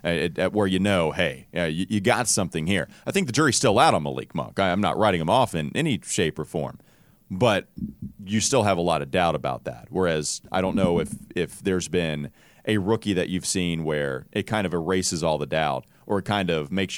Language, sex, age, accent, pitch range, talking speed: English, male, 30-49, American, 85-110 Hz, 225 wpm